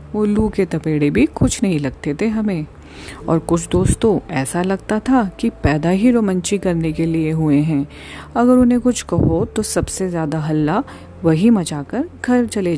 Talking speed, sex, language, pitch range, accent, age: 180 wpm, female, Hindi, 150-215 Hz, native, 40-59